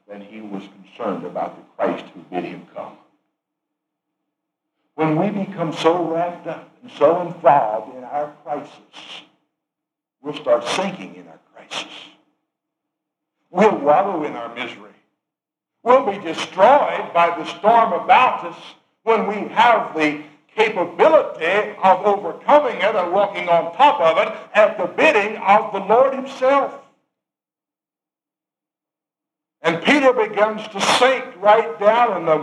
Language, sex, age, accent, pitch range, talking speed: English, male, 60-79, American, 155-245 Hz, 135 wpm